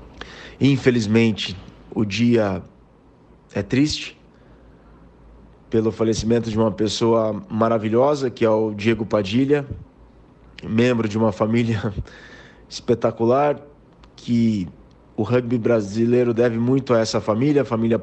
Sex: male